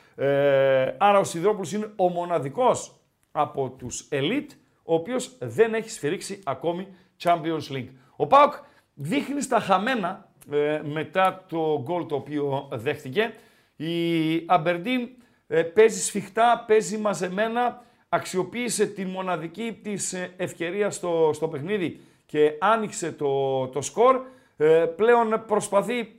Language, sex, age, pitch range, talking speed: Greek, male, 50-69, 160-220 Hz, 120 wpm